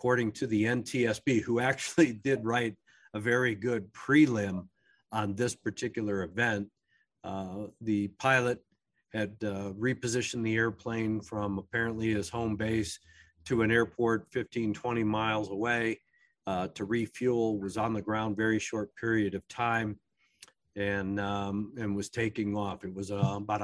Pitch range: 100-115 Hz